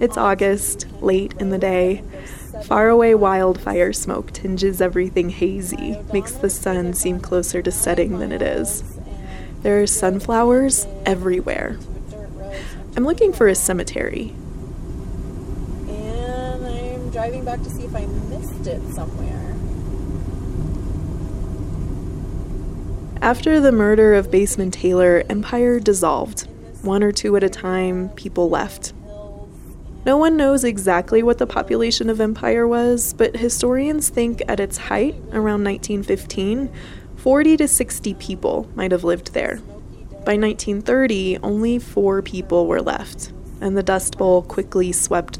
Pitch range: 180-230 Hz